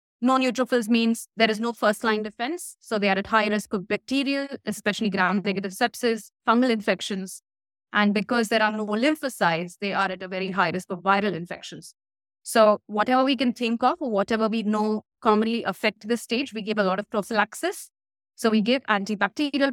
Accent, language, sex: Indian, English, female